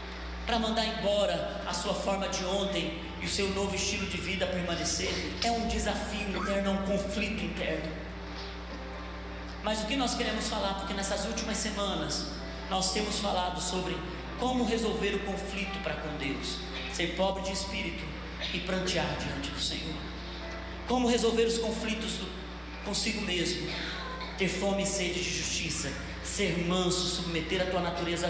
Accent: Brazilian